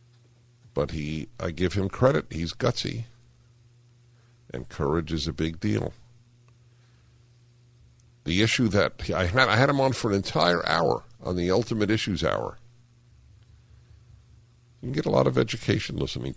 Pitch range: 85-120 Hz